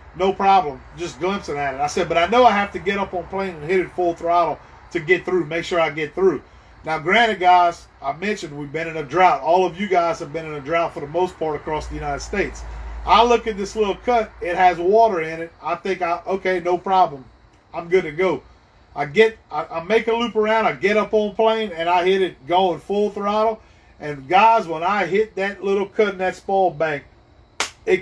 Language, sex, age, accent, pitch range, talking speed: English, male, 40-59, American, 165-210 Hz, 240 wpm